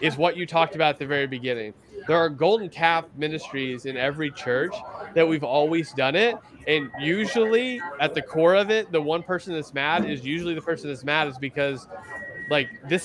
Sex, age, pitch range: male, 20-39, 145-175 Hz